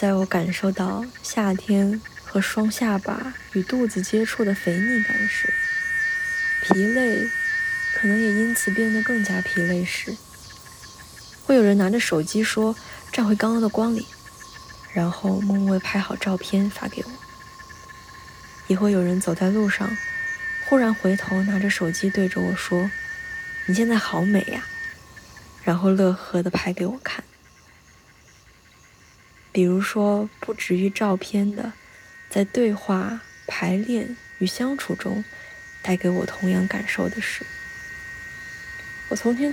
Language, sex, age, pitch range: Chinese, female, 20-39, 185-255 Hz